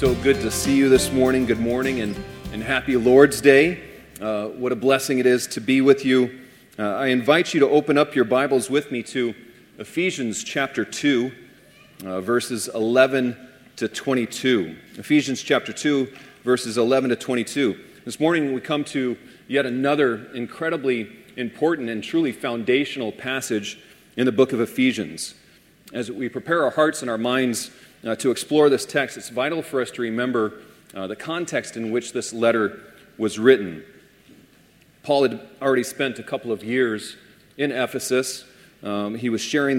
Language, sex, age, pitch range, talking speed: English, male, 40-59, 120-140 Hz, 165 wpm